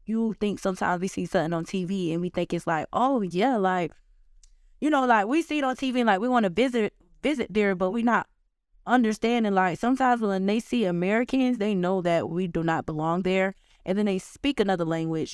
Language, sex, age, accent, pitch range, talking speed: English, female, 20-39, American, 170-220 Hz, 220 wpm